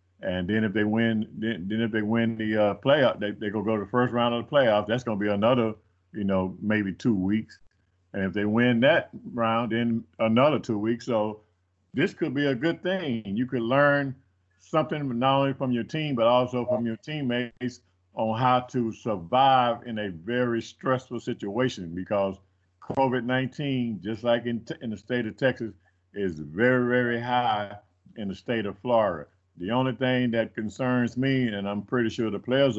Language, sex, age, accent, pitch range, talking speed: English, male, 50-69, American, 100-120 Hz, 195 wpm